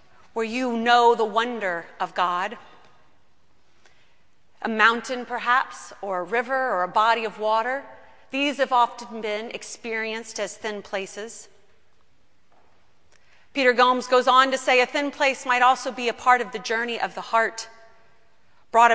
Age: 40-59